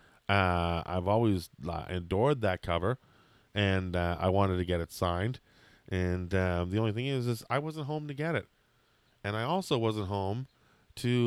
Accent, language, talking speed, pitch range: American, English, 175 wpm, 90-130 Hz